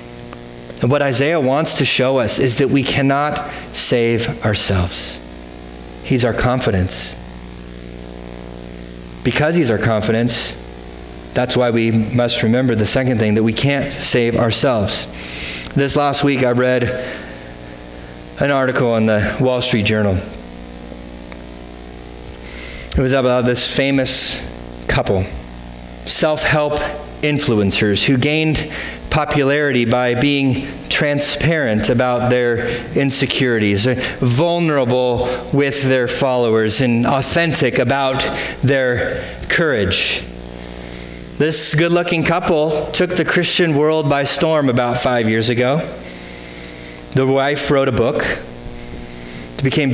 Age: 30-49